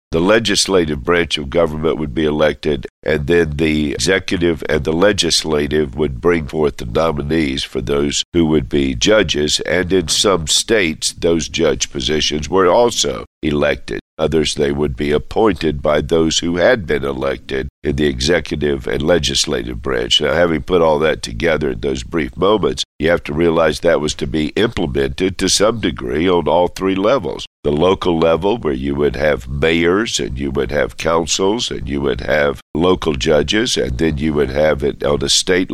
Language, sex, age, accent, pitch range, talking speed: English, male, 50-69, American, 70-85 Hz, 180 wpm